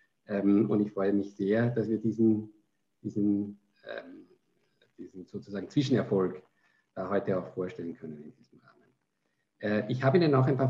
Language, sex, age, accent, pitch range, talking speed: German, male, 50-69, German, 105-125 Hz, 140 wpm